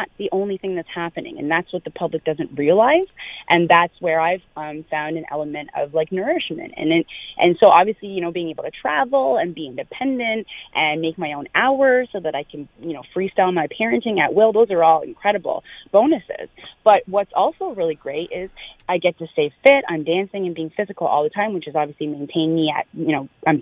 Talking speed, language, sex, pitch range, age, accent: 215 wpm, English, female, 155-195 Hz, 30-49, American